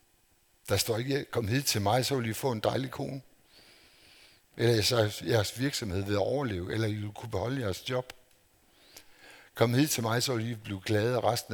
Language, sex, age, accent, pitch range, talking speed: Danish, male, 60-79, native, 100-125 Hz, 200 wpm